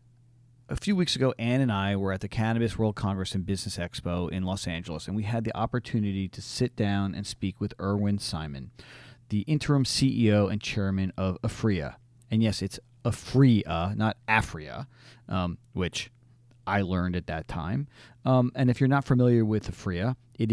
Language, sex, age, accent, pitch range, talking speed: English, male, 40-59, American, 100-120 Hz, 180 wpm